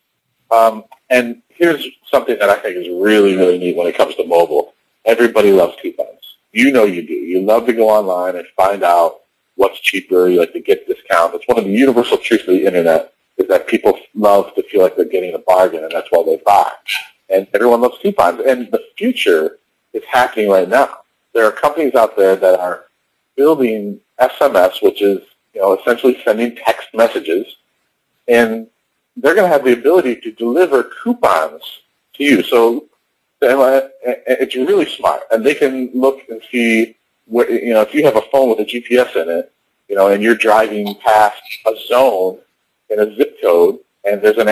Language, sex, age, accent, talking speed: English, male, 40-59, American, 190 wpm